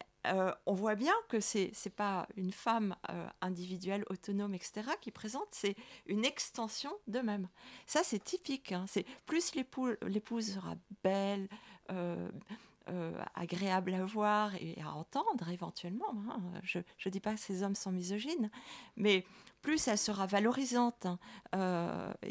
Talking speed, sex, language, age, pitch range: 150 wpm, female, French, 40-59, 190-240 Hz